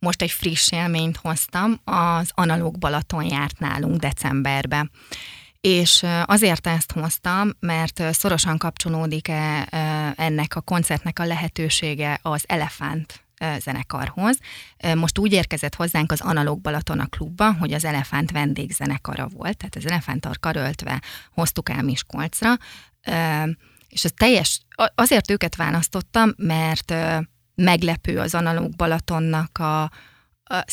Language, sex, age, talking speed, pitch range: Hungarian, female, 20-39, 110 wpm, 150-175 Hz